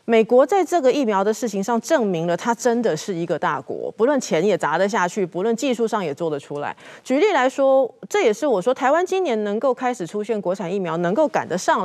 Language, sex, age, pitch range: Chinese, female, 30-49, 180-270 Hz